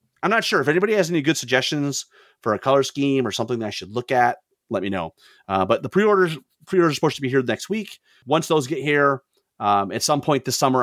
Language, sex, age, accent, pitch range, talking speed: English, male, 30-49, American, 115-160 Hz, 250 wpm